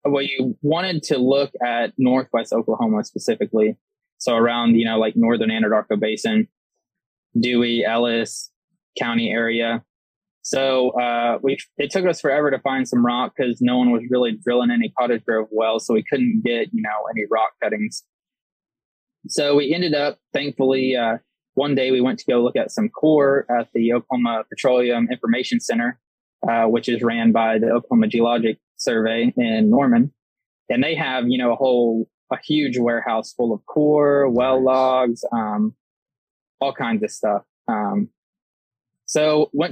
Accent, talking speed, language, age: American, 160 wpm, English, 20-39